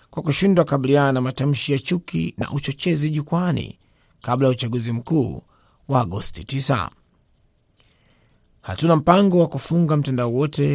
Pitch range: 115-155 Hz